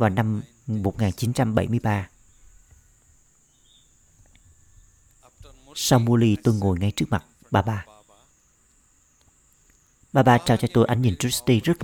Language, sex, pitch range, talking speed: Vietnamese, male, 100-140 Hz, 105 wpm